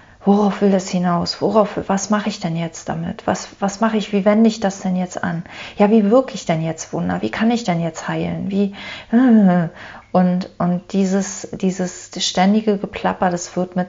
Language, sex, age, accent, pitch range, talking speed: German, female, 30-49, German, 165-195 Hz, 195 wpm